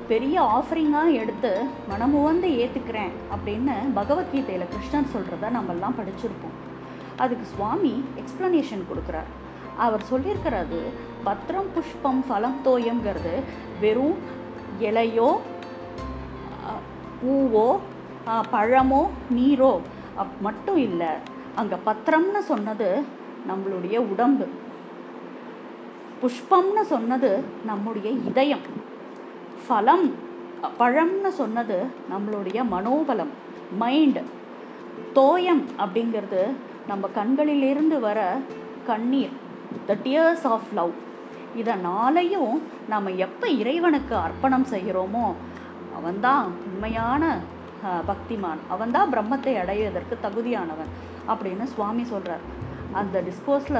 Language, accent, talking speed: Tamil, native, 80 wpm